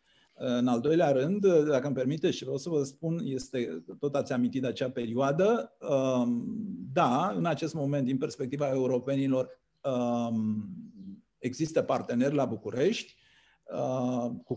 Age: 50-69